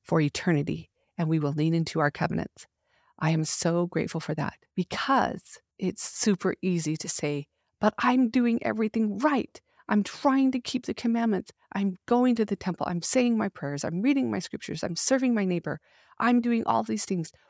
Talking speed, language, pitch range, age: 185 wpm, English, 160-215 Hz, 40-59